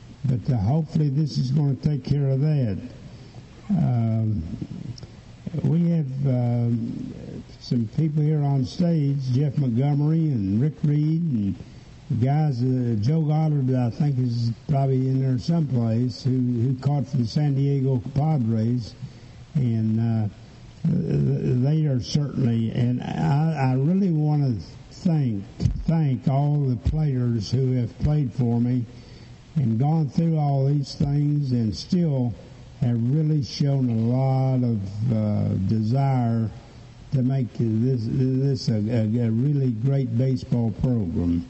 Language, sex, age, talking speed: English, male, 60-79, 135 wpm